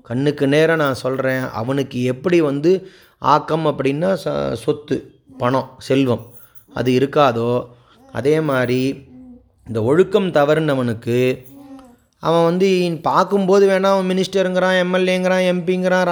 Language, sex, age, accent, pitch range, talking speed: Tamil, male, 30-49, native, 125-180 Hz, 100 wpm